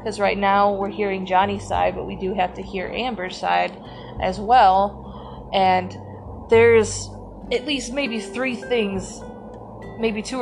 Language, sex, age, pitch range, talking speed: English, female, 20-39, 180-215 Hz, 150 wpm